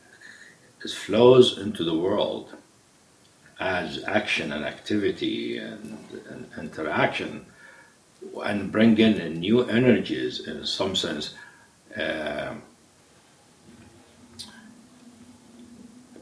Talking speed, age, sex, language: 80 wpm, 60-79, male, English